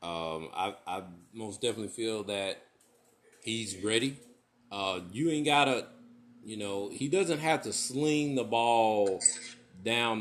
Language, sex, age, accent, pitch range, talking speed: English, male, 40-59, American, 110-145 Hz, 135 wpm